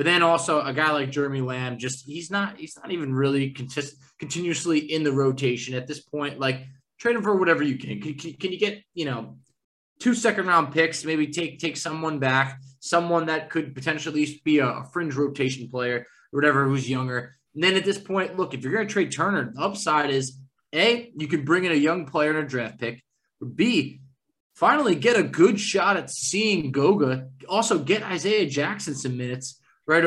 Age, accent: 20-39, American